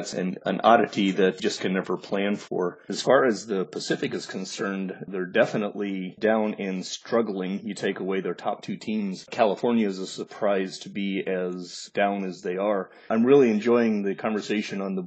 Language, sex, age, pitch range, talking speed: English, male, 30-49, 95-105 Hz, 185 wpm